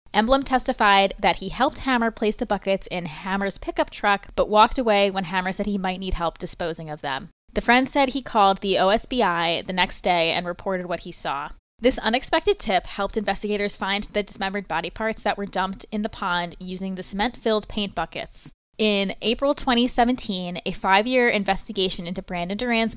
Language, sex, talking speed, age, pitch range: English, female, 185 wpm, 20-39, 185-220 Hz